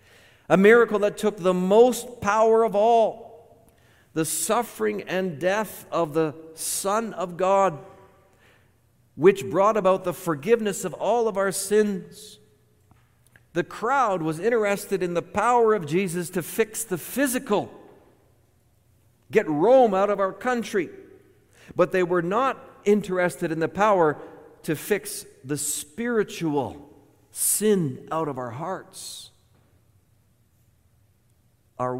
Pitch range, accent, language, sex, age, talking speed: 115-185 Hz, American, English, male, 50-69, 120 wpm